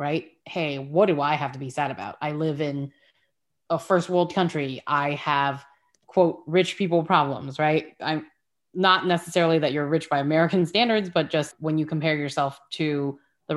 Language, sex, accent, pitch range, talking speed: English, female, American, 145-170 Hz, 180 wpm